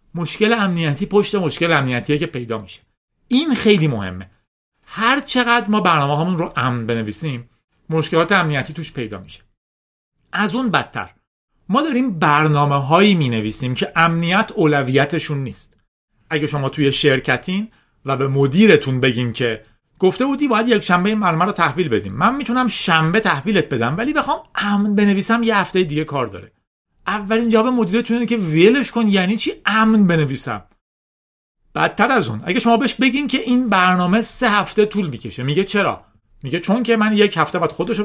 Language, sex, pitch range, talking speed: Persian, male, 135-215 Hz, 165 wpm